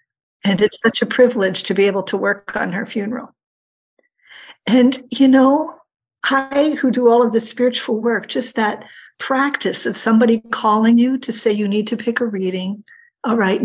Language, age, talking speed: English, 50-69, 180 wpm